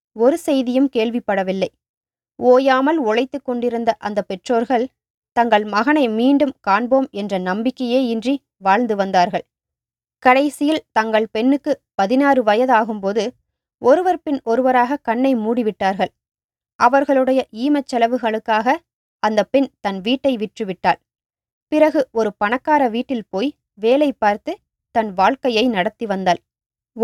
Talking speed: 100 wpm